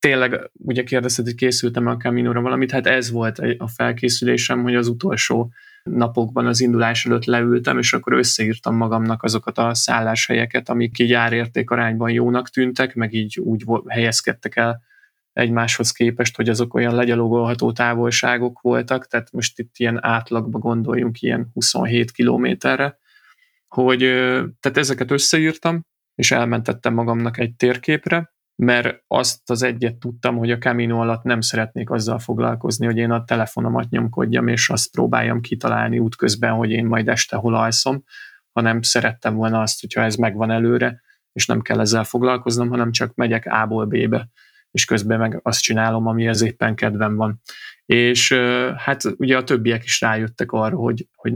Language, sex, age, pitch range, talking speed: Hungarian, male, 20-39, 115-125 Hz, 150 wpm